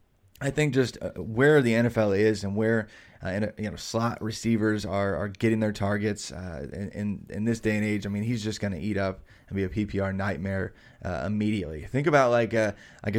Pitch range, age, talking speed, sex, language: 100-115 Hz, 20-39, 210 wpm, male, English